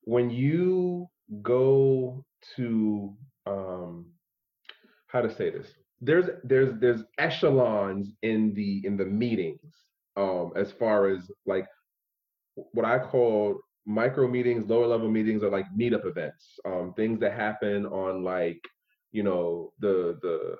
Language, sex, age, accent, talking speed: English, male, 30-49, American, 130 wpm